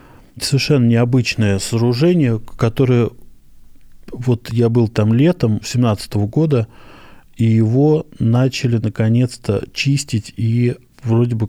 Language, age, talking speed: Russian, 20-39, 100 wpm